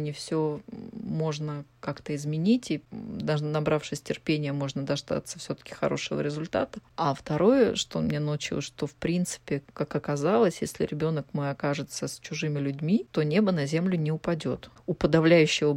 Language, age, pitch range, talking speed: Russian, 20-39, 145-175 Hz, 150 wpm